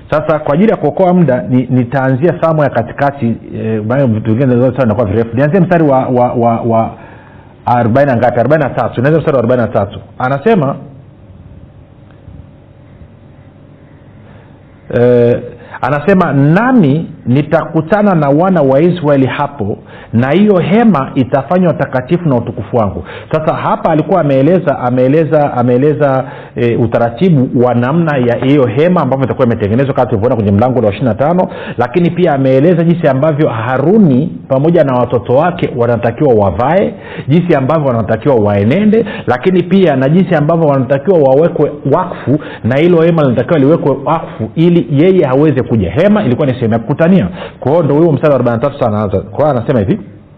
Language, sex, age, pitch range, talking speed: Swahili, male, 50-69, 120-165 Hz, 135 wpm